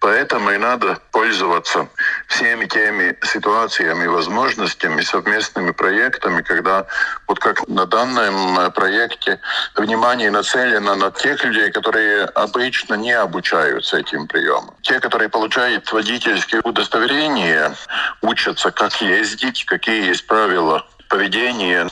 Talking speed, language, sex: 105 wpm, Russian, male